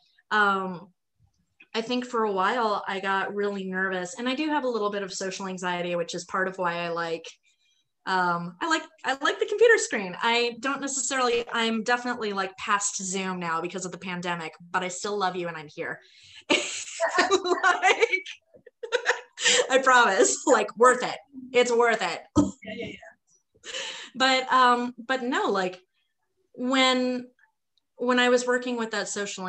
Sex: female